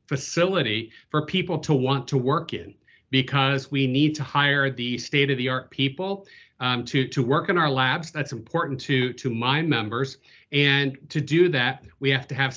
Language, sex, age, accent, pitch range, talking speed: English, male, 40-59, American, 120-140 Hz, 175 wpm